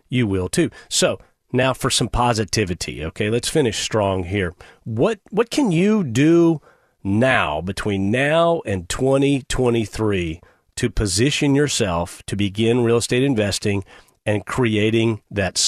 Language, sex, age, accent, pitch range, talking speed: English, male, 40-59, American, 100-130 Hz, 130 wpm